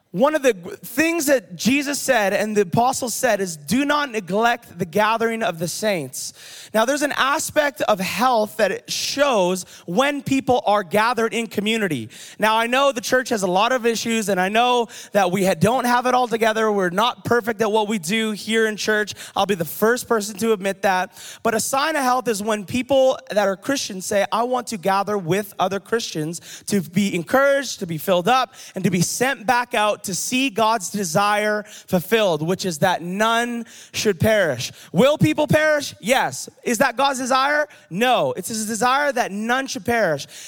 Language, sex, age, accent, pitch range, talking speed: English, male, 20-39, American, 195-255 Hz, 195 wpm